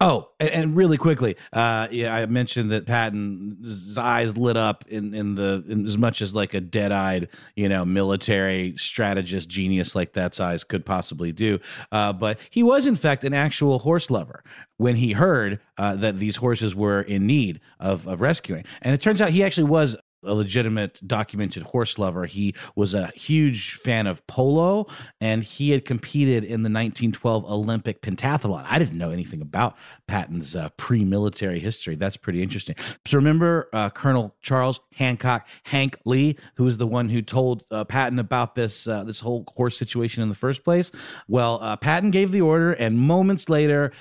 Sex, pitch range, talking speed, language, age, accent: male, 105-140 Hz, 185 wpm, English, 30-49, American